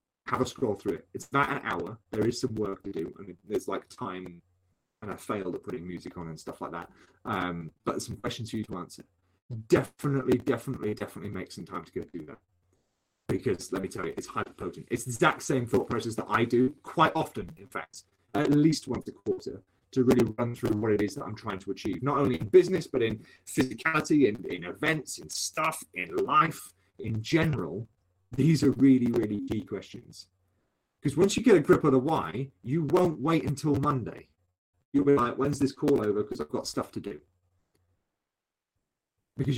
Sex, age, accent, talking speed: male, 30-49, British, 210 wpm